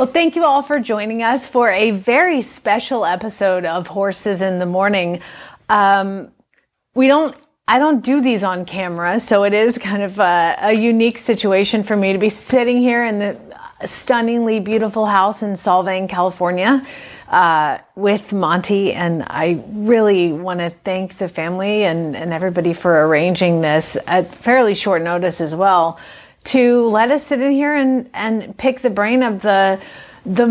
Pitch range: 180-235 Hz